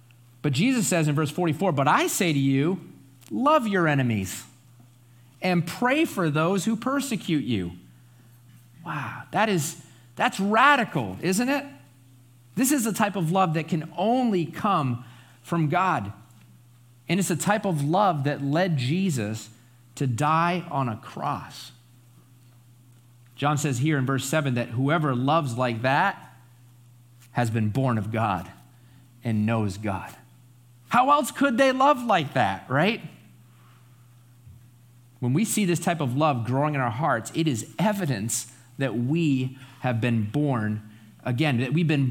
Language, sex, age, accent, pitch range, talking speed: English, male, 40-59, American, 120-165 Hz, 145 wpm